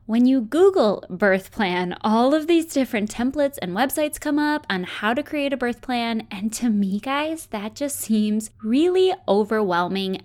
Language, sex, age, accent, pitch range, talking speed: English, female, 20-39, American, 195-265 Hz, 175 wpm